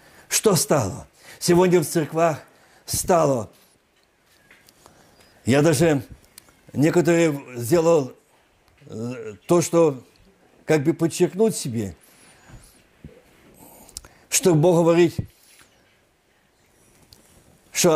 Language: Russian